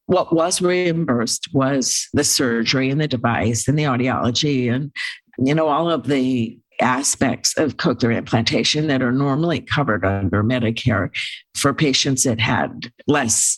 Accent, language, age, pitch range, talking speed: American, English, 50-69, 120-145 Hz, 145 wpm